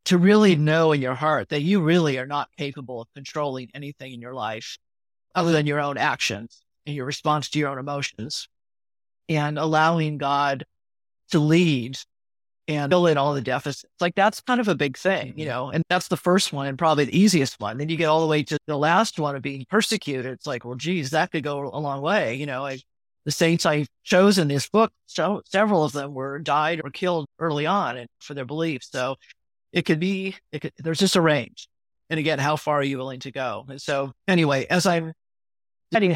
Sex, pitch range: male, 135-165 Hz